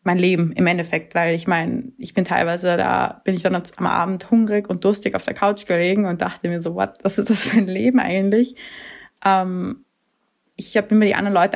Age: 20-39